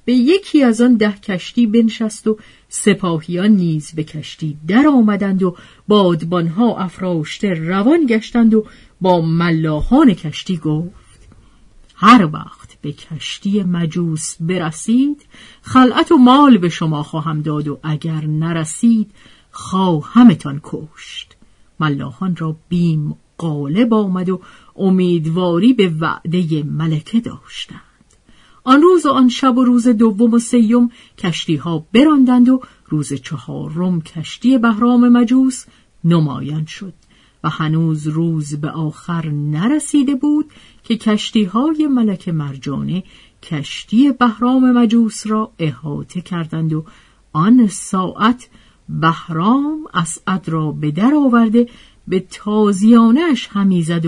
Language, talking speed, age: Persian, 115 wpm, 50-69